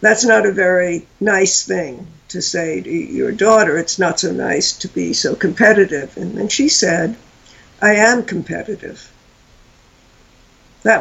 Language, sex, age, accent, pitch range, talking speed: English, female, 60-79, American, 180-225 Hz, 145 wpm